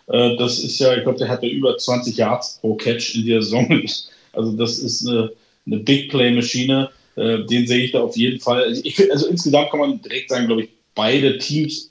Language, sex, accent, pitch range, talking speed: German, male, German, 115-135 Hz, 190 wpm